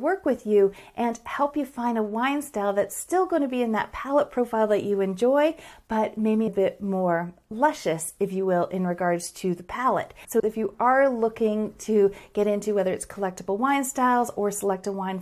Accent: American